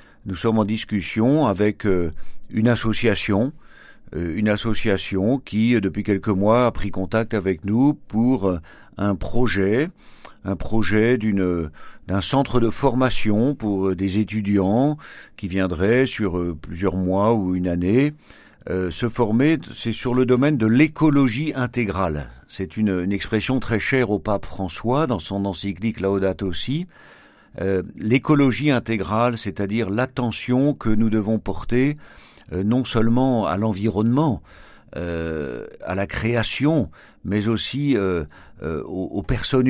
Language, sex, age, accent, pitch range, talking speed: French, male, 50-69, French, 95-120 Hz, 130 wpm